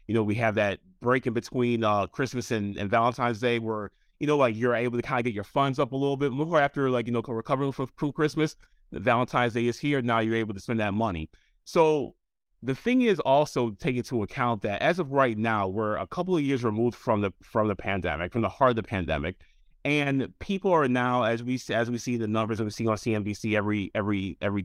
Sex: male